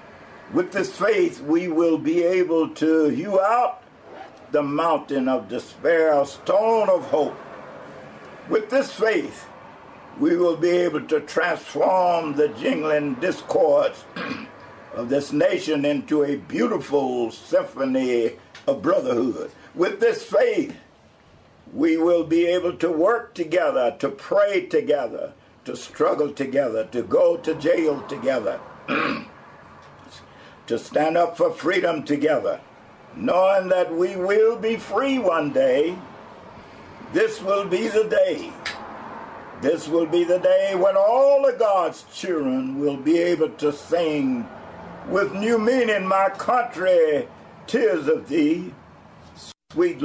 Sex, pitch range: male, 150-240 Hz